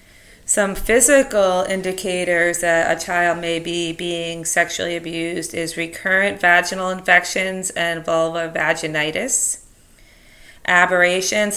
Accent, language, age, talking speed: American, English, 30-49, 100 wpm